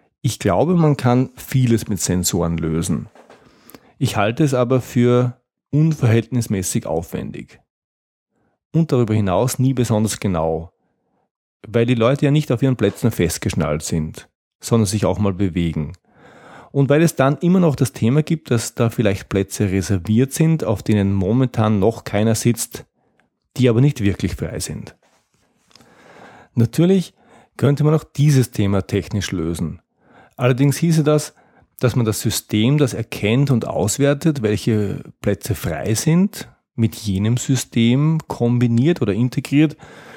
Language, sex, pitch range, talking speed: German, male, 105-135 Hz, 135 wpm